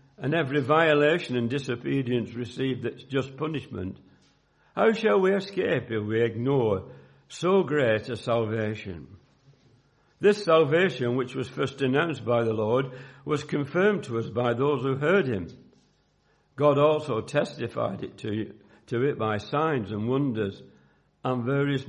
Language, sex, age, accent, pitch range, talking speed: English, male, 60-79, British, 110-145 Hz, 135 wpm